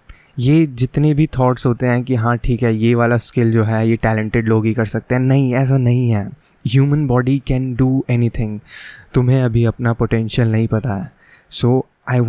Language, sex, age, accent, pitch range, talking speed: Hindi, male, 20-39, native, 115-130 Hz, 195 wpm